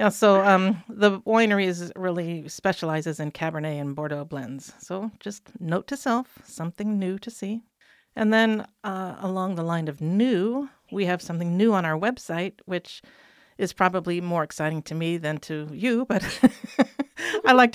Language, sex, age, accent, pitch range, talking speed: English, female, 50-69, American, 165-205 Hz, 165 wpm